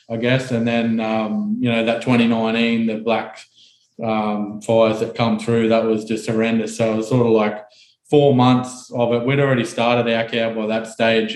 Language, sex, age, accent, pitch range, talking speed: English, male, 20-39, Australian, 110-125 Hz, 200 wpm